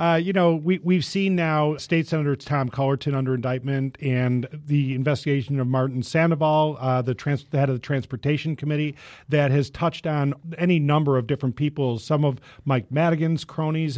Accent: American